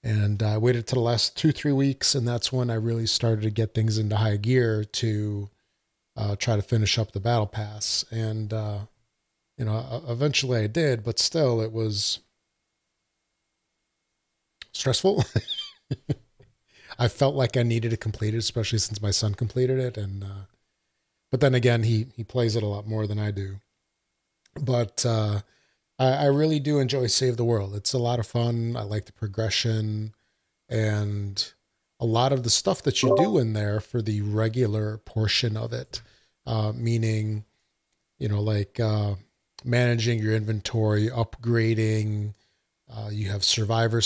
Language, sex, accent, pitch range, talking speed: English, male, American, 105-120 Hz, 165 wpm